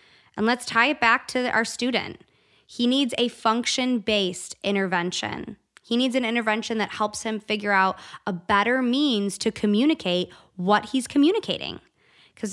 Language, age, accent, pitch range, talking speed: English, 20-39, American, 190-235 Hz, 150 wpm